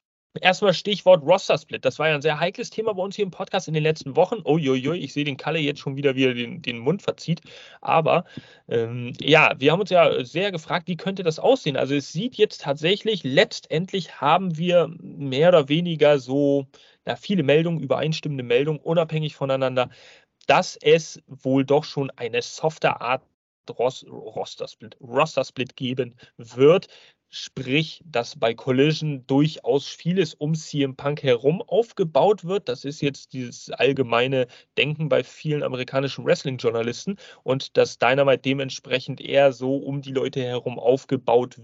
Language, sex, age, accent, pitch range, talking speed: German, male, 30-49, German, 135-170 Hz, 155 wpm